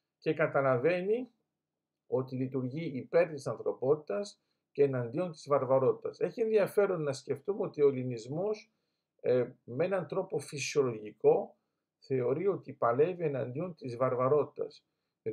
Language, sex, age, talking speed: Greek, male, 50-69, 115 wpm